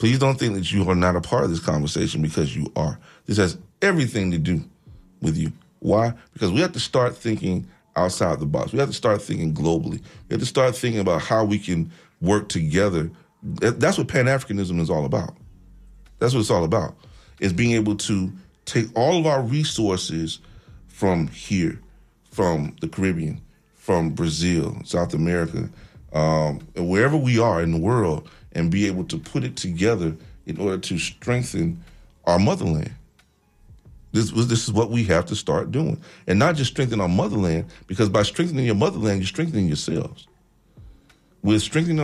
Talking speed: 175 wpm